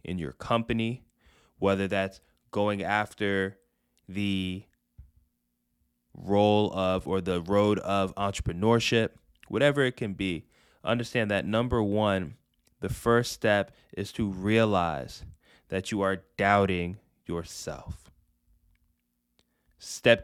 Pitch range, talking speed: 80-115 Hz, 105 wpm